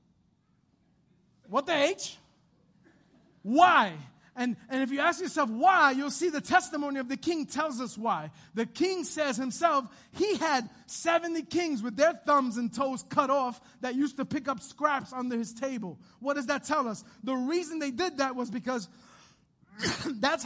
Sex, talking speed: male, 170 wpm